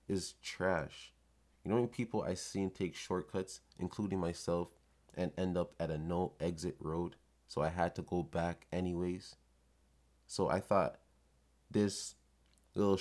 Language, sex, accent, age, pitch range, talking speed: English, male, American, 20-39, 70-95 Hz, 150 wpm